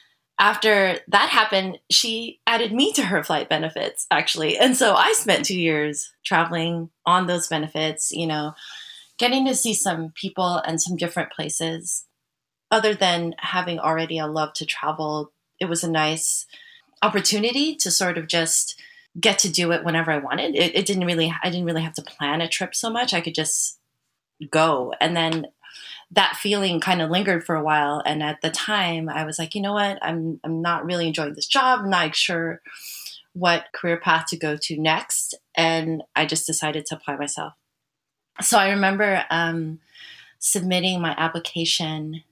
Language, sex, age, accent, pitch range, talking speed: English, female, 20-39, American, 155-195 Hz, 175 wpm